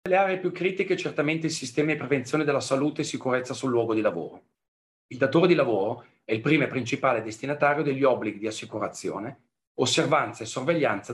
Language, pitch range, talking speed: Italian, 110-145 Hz, 190 wpm